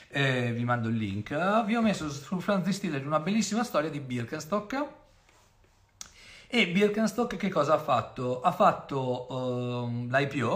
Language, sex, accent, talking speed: Italian, male, native, 155 wpm